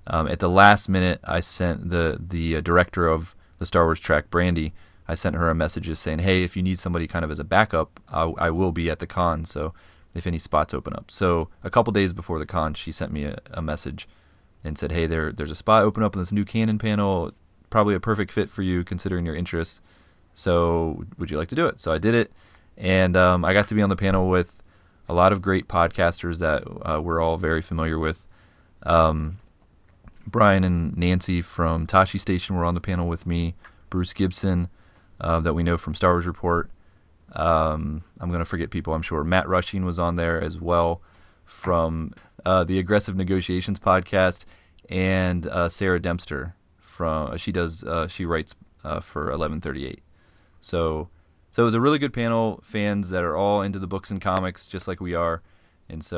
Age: 30-49